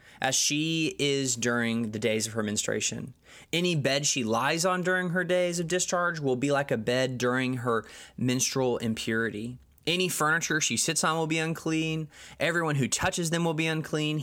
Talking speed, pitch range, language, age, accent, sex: 180 wpm, 120-160 Hz, English, 20-39, American, male